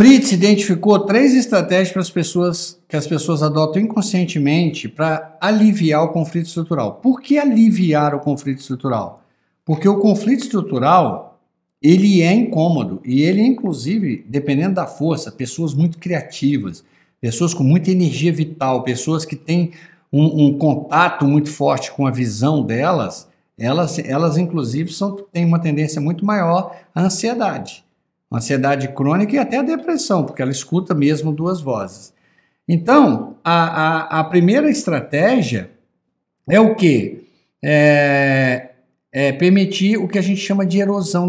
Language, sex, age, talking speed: Portuguese, male, 60-79, 135 wpm